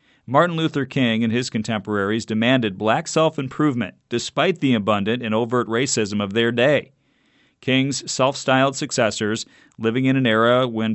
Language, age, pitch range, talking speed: English, 40-59, 115-140 Hz, 145 wpm